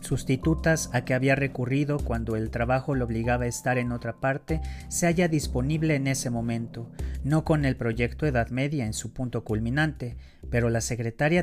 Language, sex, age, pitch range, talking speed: Spanish, male, 40-59, 115-155 Hz, 180 wpm